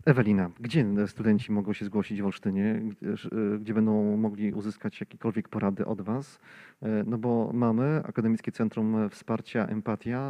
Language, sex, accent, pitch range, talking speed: Polish, male, native, 110-130 Hz, 140 wpm